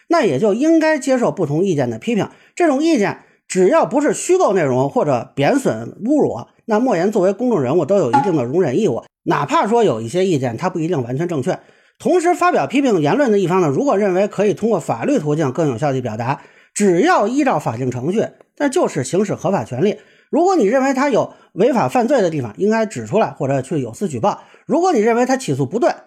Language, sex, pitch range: Chinese, male, 150-235 Hz